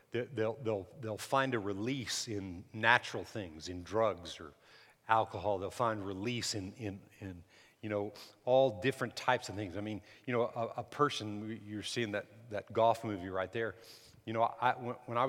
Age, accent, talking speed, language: 50-69, American, 180 wpm, English